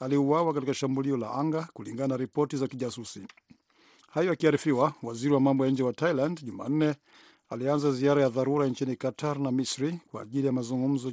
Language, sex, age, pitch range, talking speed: Swahili, male, 50-69, 130-150 Hz, 160 wpm